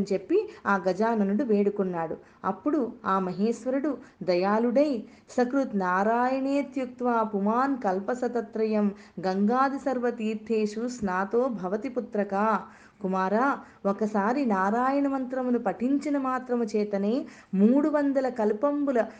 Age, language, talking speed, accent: 20-39, Telugu, 85 wpm, native